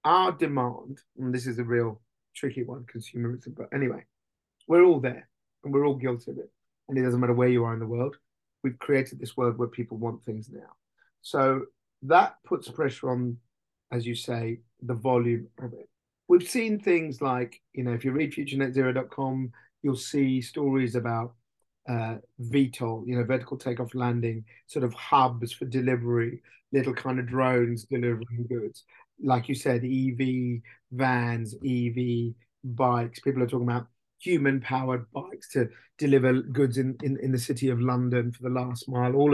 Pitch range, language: 120-145 Hz, English